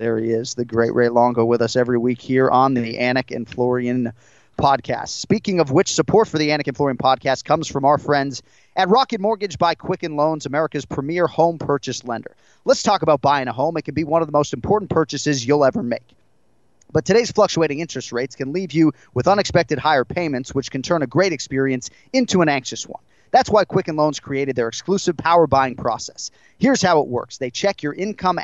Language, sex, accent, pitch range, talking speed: English, male, American, 130-165 Hz, 215 wpm